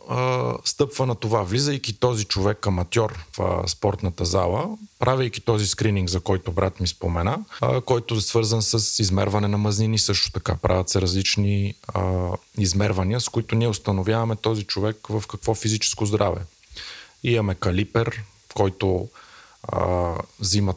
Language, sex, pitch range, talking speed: Bulgarian, male, 95-120 Hz, 145 wpm